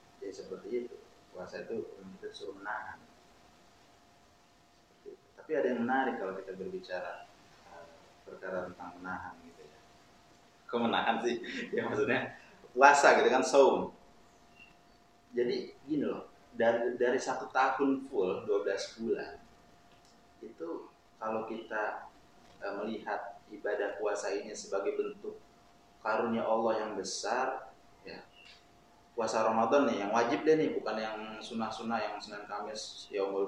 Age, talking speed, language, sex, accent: 30-49, 120 wpm, Indonesian, male, native